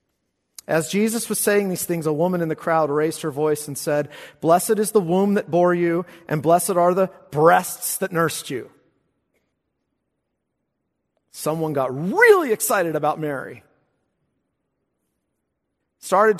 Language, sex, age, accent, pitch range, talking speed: English, male, 40-59, American, 145-195 Hz, 140 wpm